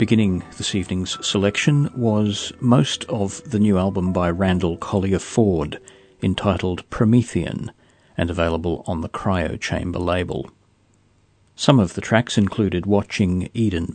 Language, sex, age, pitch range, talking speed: English, male, 50-69, 90-110 Hz, 130 wpm